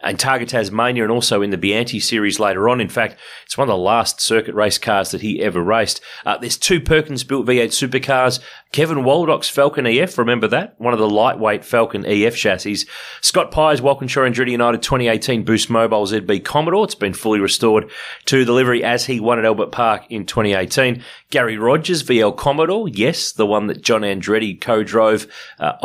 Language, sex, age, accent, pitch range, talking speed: English, male, 30-49, Australian, 105-130 Hz, 190 wpm